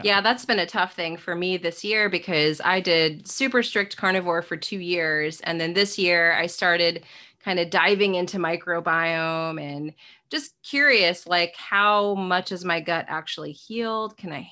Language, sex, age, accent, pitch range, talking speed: English, female, 20-39, American, 165-210 Hz, 180 wpm